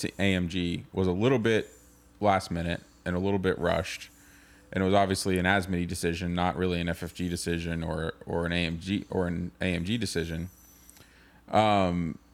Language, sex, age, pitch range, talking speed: English, male, 20-39, 95-110 Hz, 165 wpm